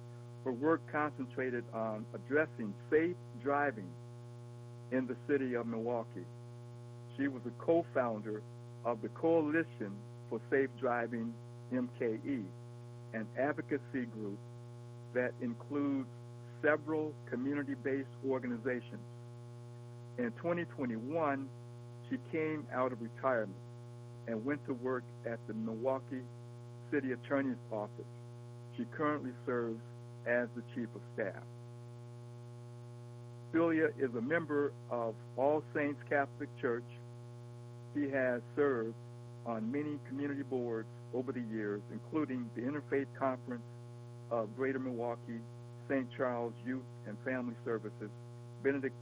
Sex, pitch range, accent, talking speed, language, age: male, 120-130 Hz, American, 110 wpm, English, 60-79